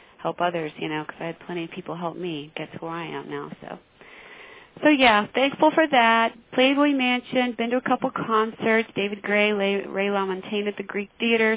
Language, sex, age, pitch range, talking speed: English, female, 30-49, 165-225 Hz, 200 wpm